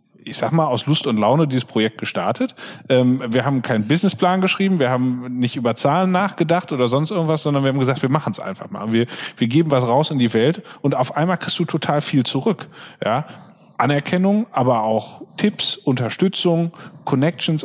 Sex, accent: male, German